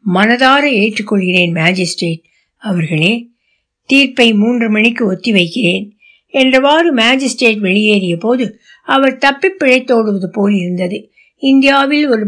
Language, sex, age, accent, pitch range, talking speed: Tamil, female, 60-79, native, 205-260 Hz, 90 wpm